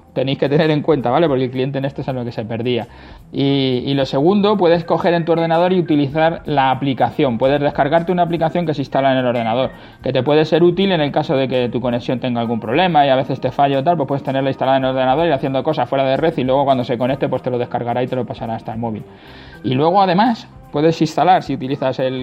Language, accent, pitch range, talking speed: Spanish, Spanish, 130-160 Hz, 265 wpm